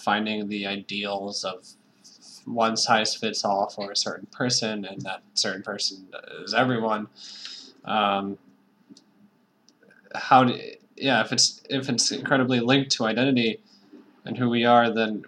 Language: English